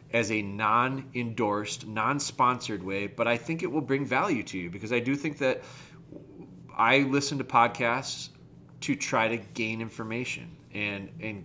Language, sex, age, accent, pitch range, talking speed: English, male, 30-49, American, 110-140 Hz, 155 wpm